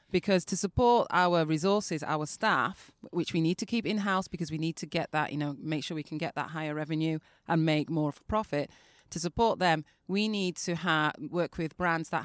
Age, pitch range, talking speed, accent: 30-49, 155-195 Hz, 230 wpm, British